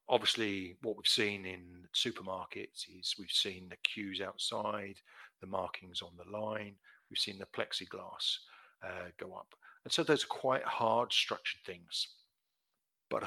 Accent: British